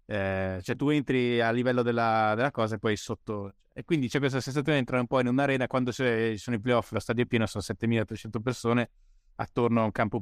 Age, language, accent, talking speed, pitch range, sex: 20-39, Italian, native, 235 wpm, 105-125 Hz, male